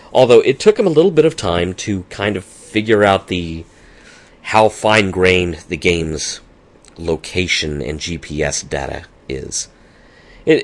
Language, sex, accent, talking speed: English, male, American, 140 wpm